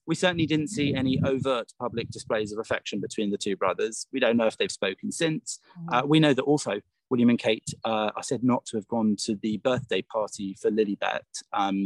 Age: 30-49